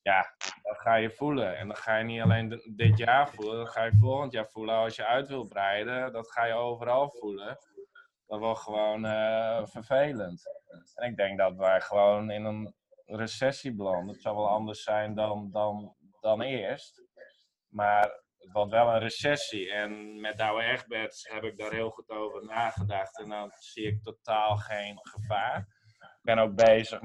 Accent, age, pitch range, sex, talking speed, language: Dutch, 20-39, 105-130 Hz, male, 180 wpm, Dutch